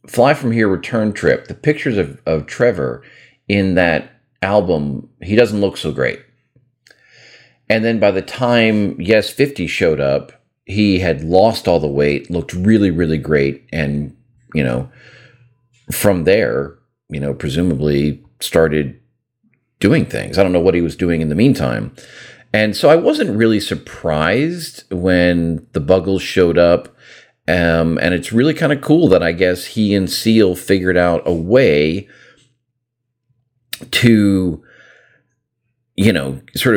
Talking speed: 145 wpm